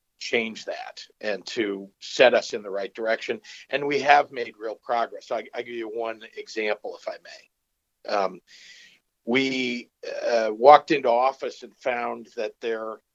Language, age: English, 50-69